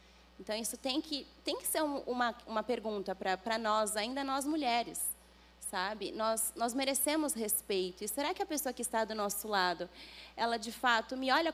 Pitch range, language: 195-255 Hz, Portuguese